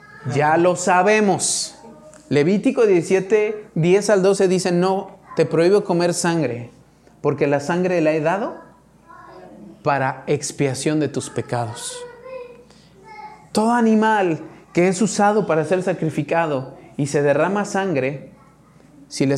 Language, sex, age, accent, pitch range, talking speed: Spanish, male, 30-49, Mexican, 145-195 Hz, 120 wpm